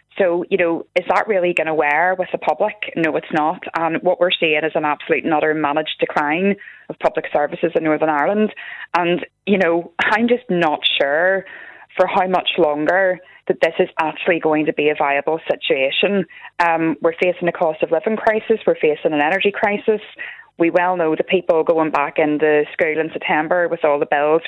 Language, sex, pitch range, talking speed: English, female, 155-190 Hz, 200 wpm